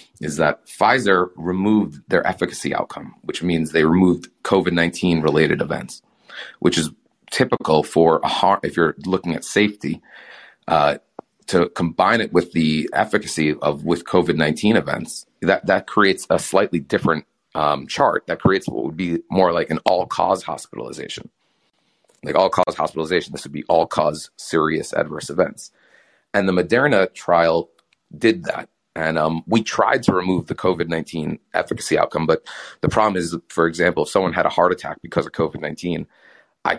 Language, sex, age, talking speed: English, male, 30-49, 160 wpm